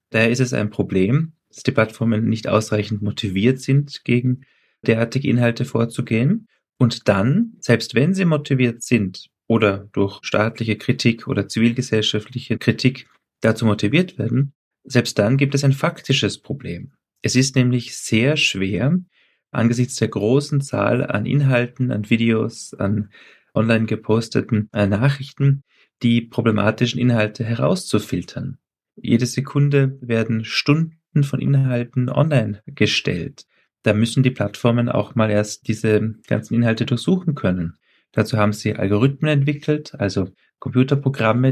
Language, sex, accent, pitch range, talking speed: German, male, German, 110-135 Hz, 130 wpm